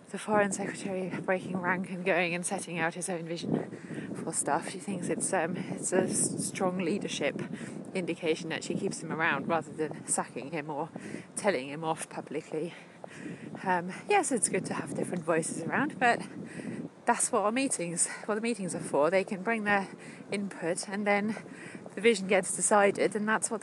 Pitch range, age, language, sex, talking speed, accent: 165-200 Hz, 30-49, English, female, 180 wpm, British